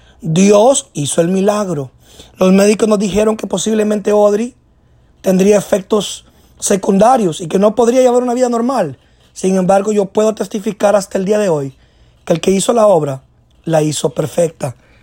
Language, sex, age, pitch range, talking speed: Spanish, male, 30-49, 190-240 Hz, 165 wpm